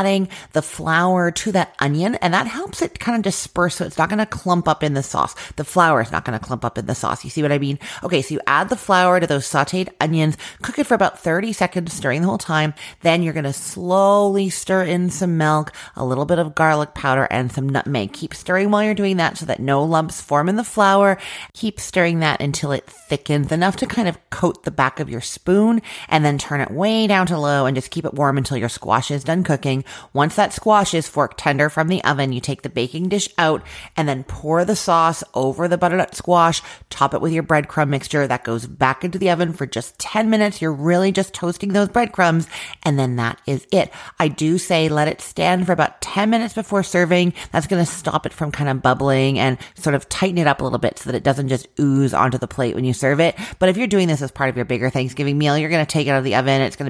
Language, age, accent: English, 30-49, American